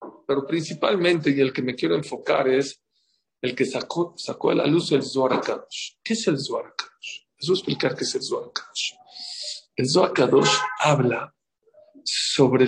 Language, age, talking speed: English, 50-69, 180 wpm